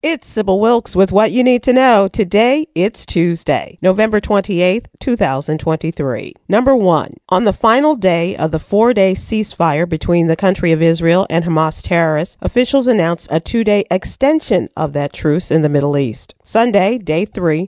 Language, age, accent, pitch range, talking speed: English, 40-59, American, 160-210 Hz, 165 wpm